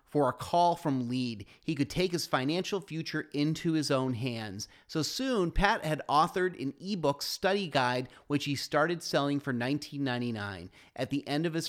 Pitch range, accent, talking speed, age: 130-175 Hz, American, 180 wpm, 30-49